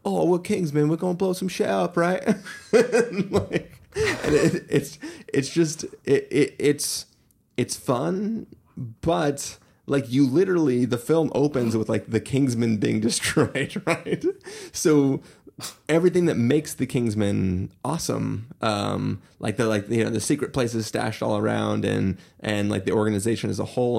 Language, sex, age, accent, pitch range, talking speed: English, male, 30-49, American, 105-140 Hz, 160 wpm